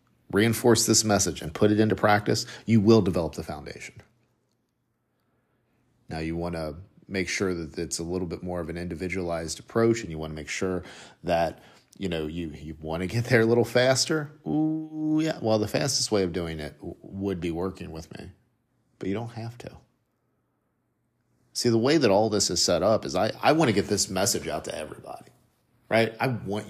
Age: 40-59